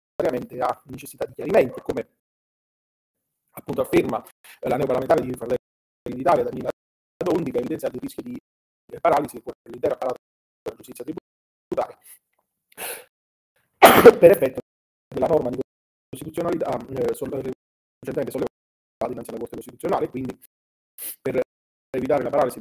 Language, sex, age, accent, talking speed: Italian, male, 40-59, native, 110 wpm